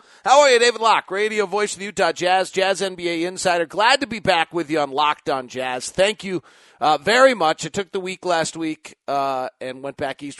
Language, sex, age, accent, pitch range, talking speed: English, male, 40-59, American, 120-180 Hz, 230 wpm